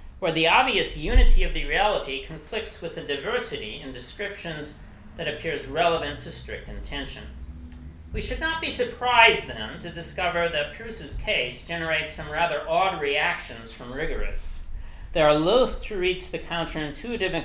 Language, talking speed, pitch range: English, 150 wpm, 120-180 Hz